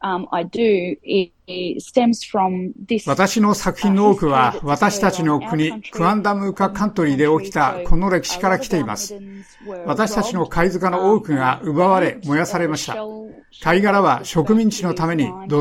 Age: 60-79